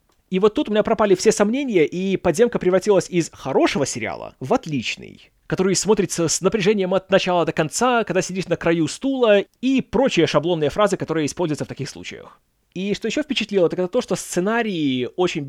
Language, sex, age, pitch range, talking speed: Russian, male, 20-39, 155-205 Hz, 185 wpm